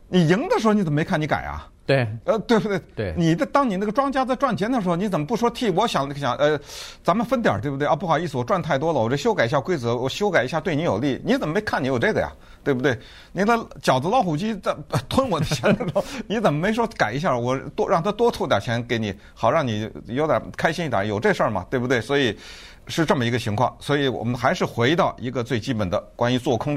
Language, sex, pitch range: Chinese, male, 115-195 Hz